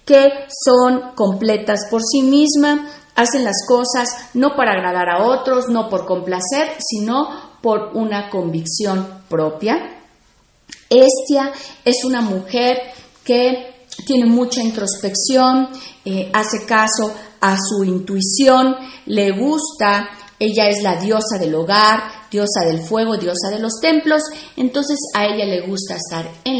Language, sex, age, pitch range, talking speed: Spanish, female, 40-59, 190-255 Hz, 130 wpm